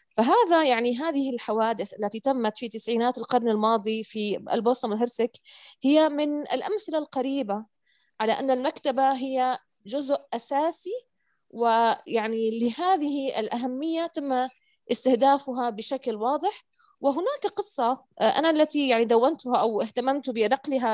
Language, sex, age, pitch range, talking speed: Arabic, female, 20-39, 225-280 Hz, 110 wpm